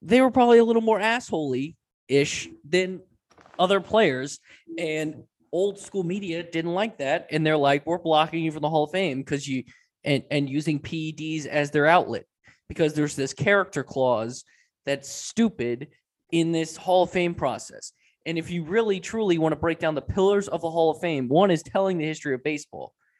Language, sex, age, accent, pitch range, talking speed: English, male, 20-39, American, 150-200 Hz, 190 wpm